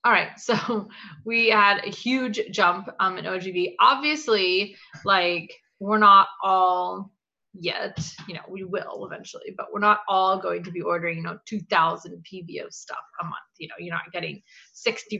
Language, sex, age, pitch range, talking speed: English, female, 20-39, 180-230 Hz, 175 wpm